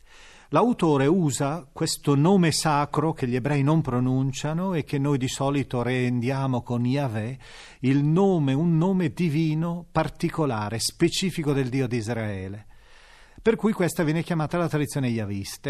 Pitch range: 125-170 Hz